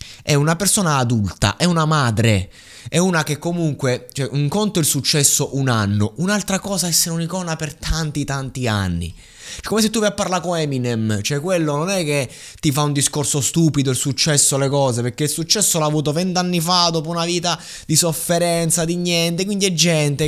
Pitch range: 115-170 Hz